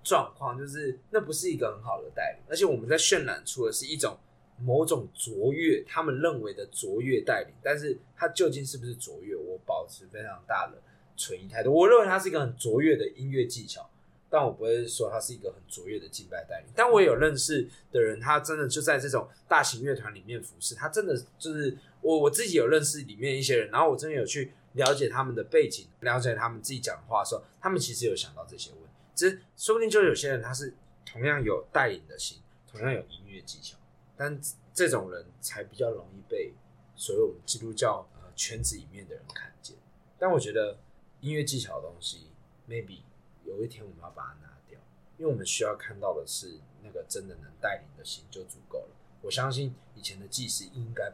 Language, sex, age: Chinese, male, 20-39